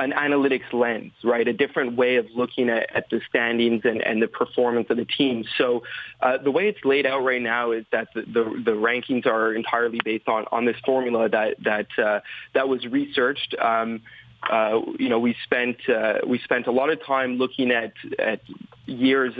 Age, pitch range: 20-39, 120-135 Hz